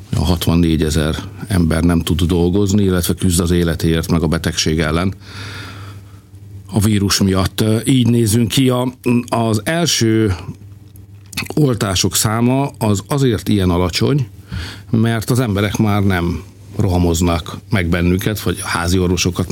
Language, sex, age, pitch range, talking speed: Hungarian, male, 50-69, 85-105 Hz, 125 wpm